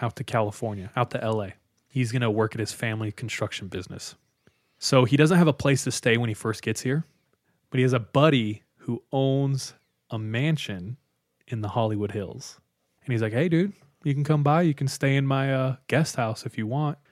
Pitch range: 110-140 Hz